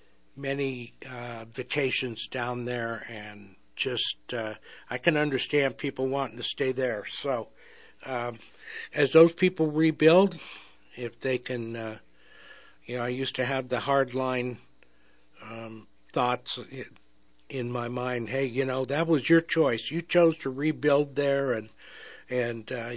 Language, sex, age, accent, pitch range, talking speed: English, male, 60-79, American, 120-145 Hz, 145 wpm